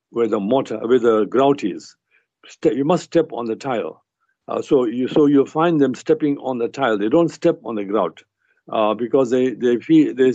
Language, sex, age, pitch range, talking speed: English, male, 60-79, 110-145 Hz, 210 wpm